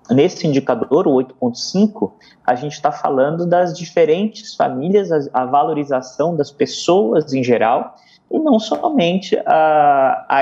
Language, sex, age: Portuguese, male, 20-39